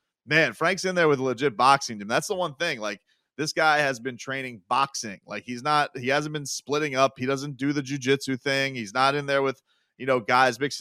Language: English